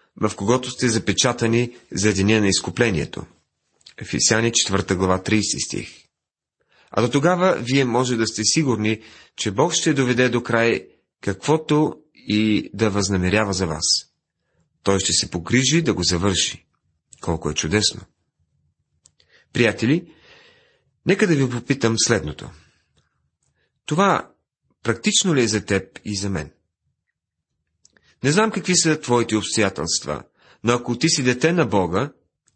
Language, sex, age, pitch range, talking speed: Bulgarian, male, 40-59, 105-145 Hz, 130 wpm